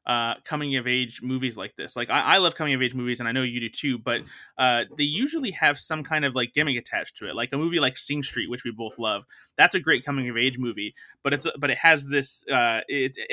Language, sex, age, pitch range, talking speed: English, male, 20-39, 120-140 Hz, 260 wpm